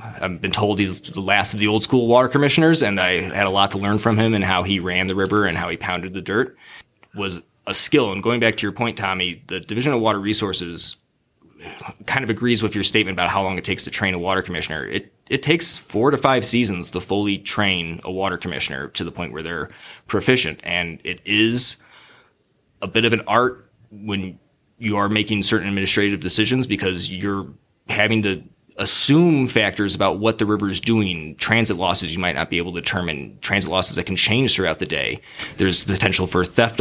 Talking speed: 215 wpm